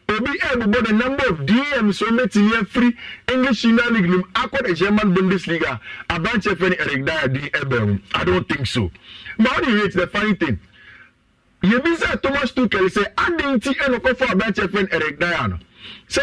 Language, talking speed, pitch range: English, 125 wpm, 180-235 Hz